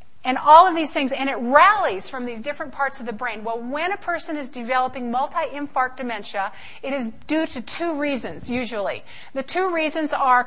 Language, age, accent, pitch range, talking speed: English, 50-69, American, 245-305 Hz, 195 wpm